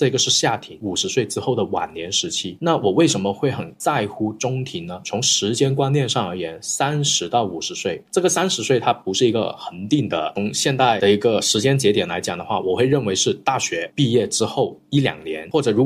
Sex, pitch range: male, 100-145 Hz